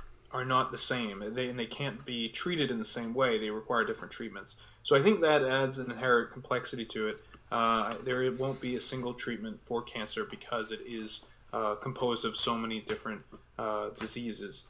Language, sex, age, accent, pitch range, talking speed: English, male, 20-39, American, 115-130 Hz, 200 wpm